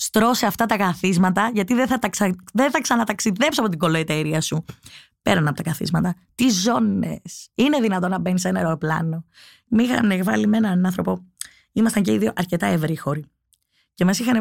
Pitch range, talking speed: 170-215 Hz, 185 wpm